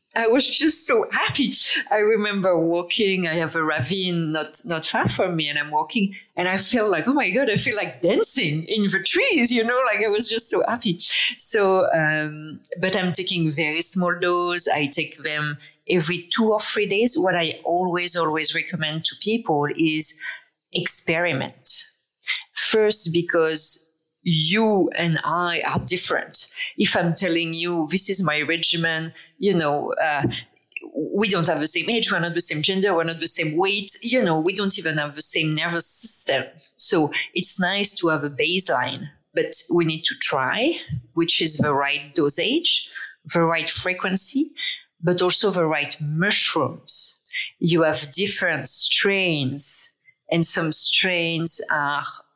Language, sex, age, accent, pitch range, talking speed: English, female, 40-59, French, 160-205 Hz, 165 wpm